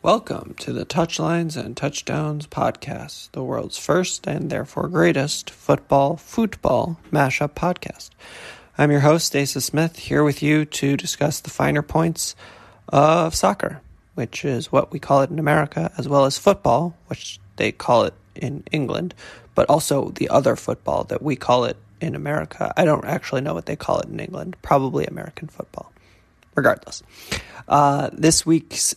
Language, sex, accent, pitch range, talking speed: English, male, American, 135-160 Hz, 160 wpm